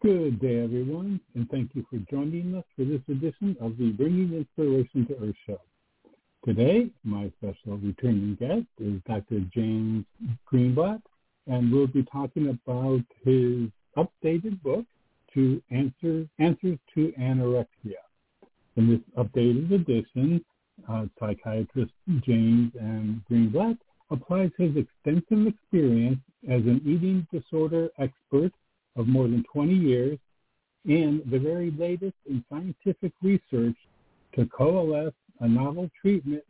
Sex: male